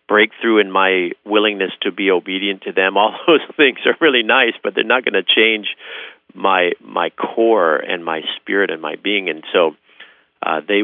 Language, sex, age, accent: English, male, 50-69, American